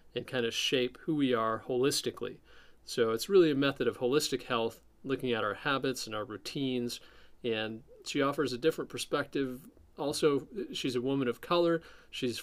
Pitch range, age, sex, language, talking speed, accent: 110-130 Hz, 40-59, male, English, 175 wpm, American